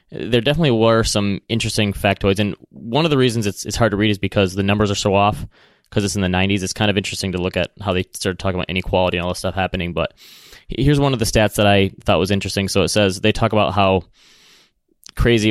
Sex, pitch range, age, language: male, 90-110 Hz, 20-39, English